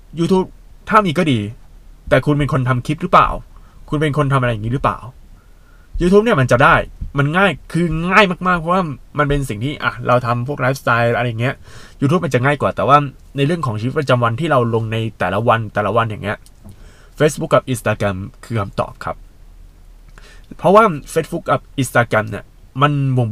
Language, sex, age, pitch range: Thai, male, 20-39, 110-150 Hz